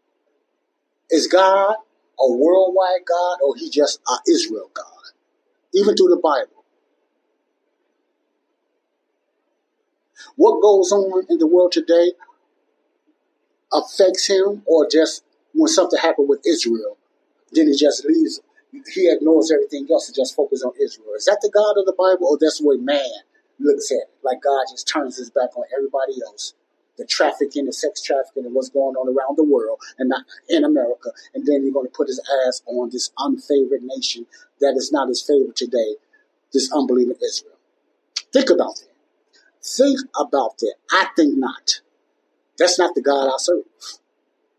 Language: English